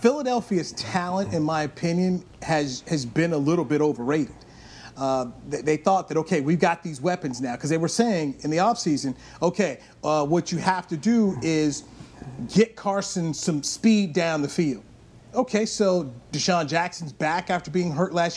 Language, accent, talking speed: English, American, 175 wpm